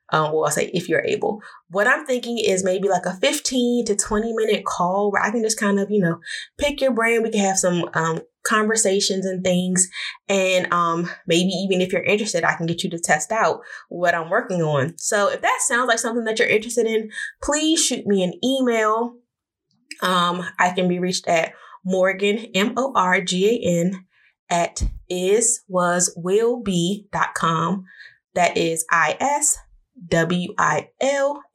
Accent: American